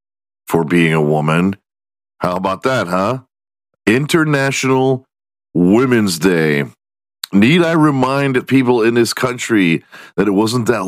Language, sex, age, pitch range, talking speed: English, male, 40-59, 90-130 Hz, 120 wpm